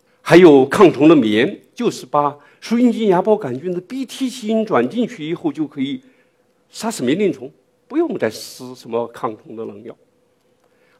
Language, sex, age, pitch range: Chinese, male, 50-69, 115-195 Hz